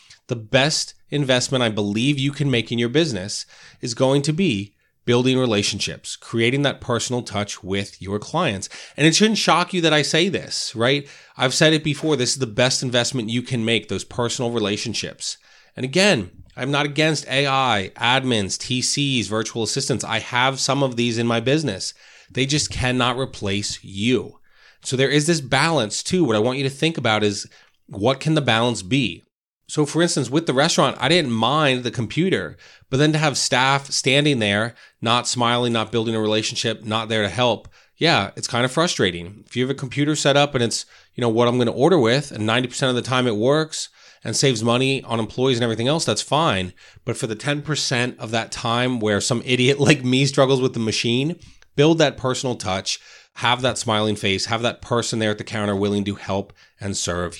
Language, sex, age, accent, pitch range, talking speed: English, male, 30-49, American, 110-140 Hz, 205 wpm